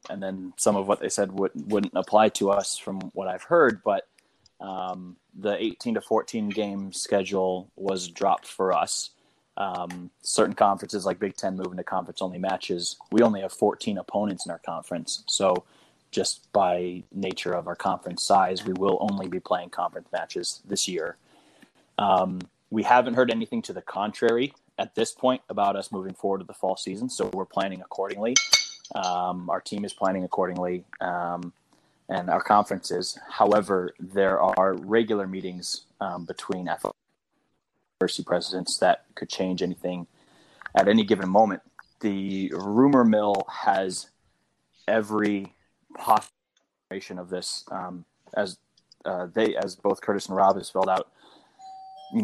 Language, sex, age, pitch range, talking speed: English, male, 20-39, 90-105 Hz, 155 wpm